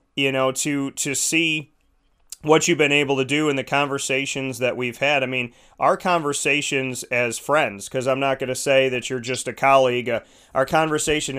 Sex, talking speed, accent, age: male, 195 wpm, American, 30-49